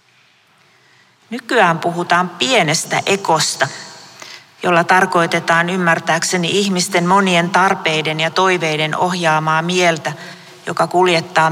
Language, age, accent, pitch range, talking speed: Finnish, 40-59, native, 160-180 Hz, 85 wpm